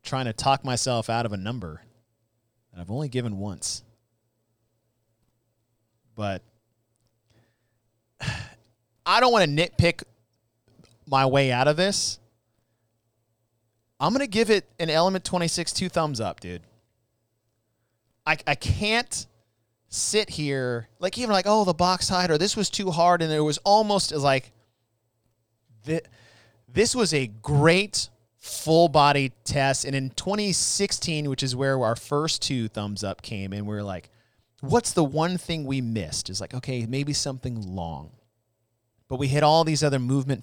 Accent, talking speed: American, 145 wpm